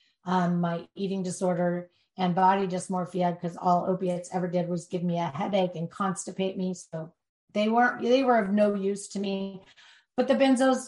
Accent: American